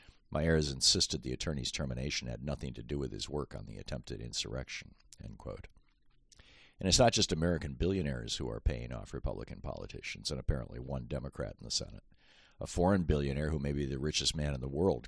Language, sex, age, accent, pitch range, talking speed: English, male, 50-69, American, 65-80 Hz, 195 wpm